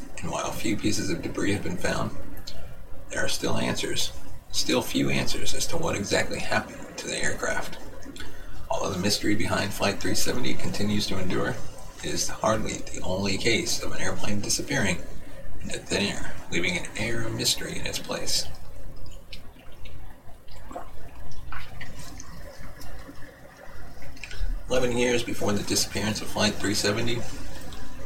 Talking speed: 130 wpm